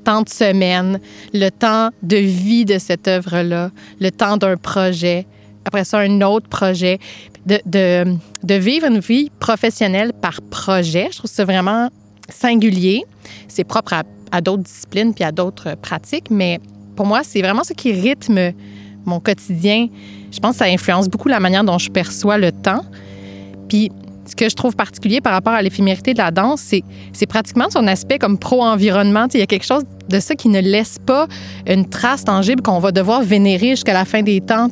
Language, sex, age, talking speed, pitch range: French, female, 30-49, 190 wpm, 185-225 Hz